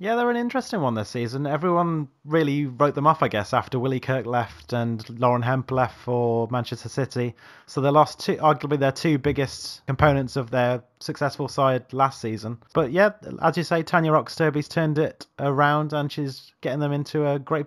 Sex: male